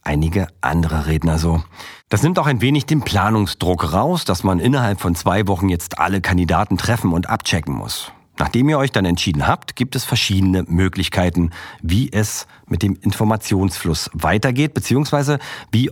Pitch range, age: 85-115 Hz, 50-69